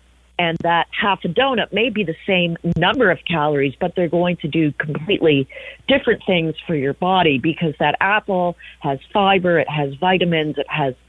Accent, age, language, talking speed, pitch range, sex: American, 50-69, English, 180 wpm, 150-195 Hz, female